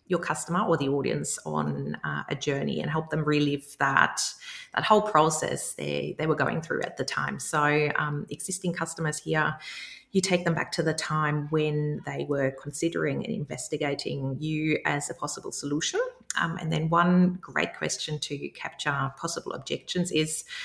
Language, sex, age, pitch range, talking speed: English, female, 30-49, 145-170 Hz, 170 wpm